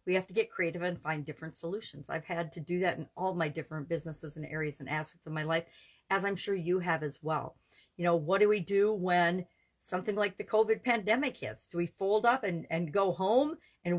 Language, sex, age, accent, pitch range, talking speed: English, female, 50-69, American, 170-220 Hz, 235 wpm